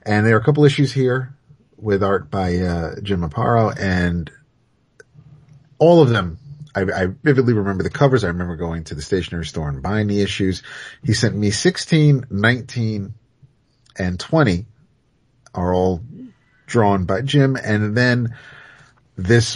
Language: English